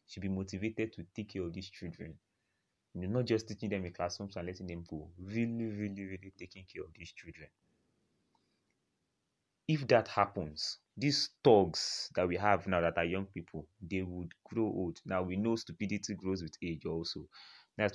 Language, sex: English, male